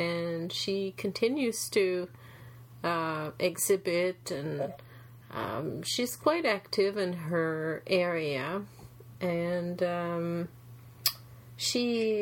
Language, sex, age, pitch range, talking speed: English, female, 30-49, 130-195 Hz, 85 wpm